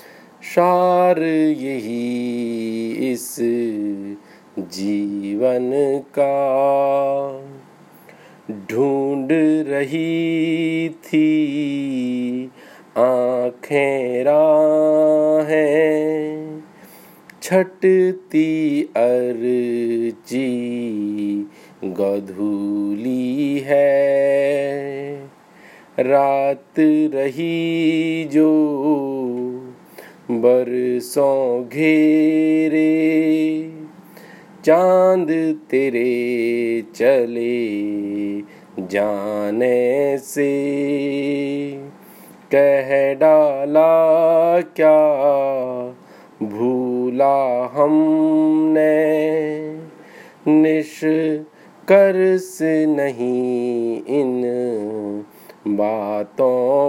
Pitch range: 125-155 Hz